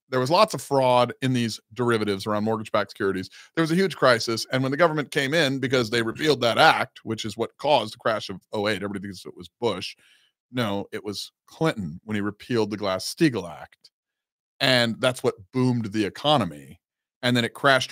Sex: male